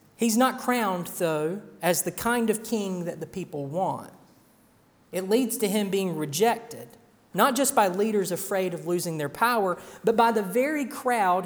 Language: English